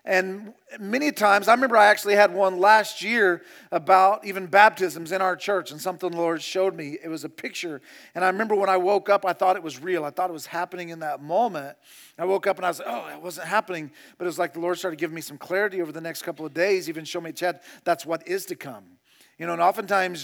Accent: American